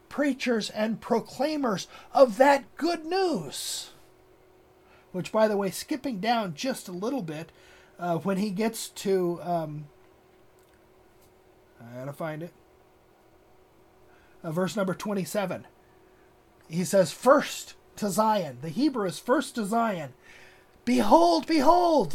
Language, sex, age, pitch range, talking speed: English, male, 30-49, 180-235 Hz, 120 wpm